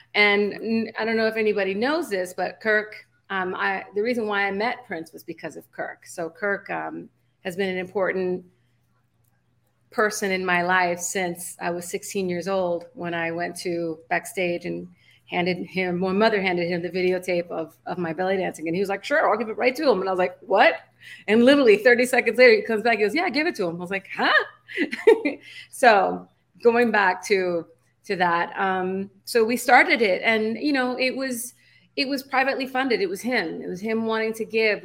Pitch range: 175-220 Hz